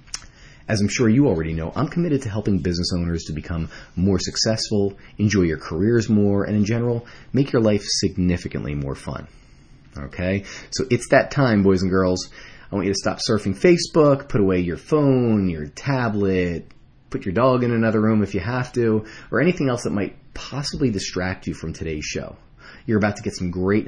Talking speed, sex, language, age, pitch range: 195 wpm, male, English, 30-49, 90-120 Hz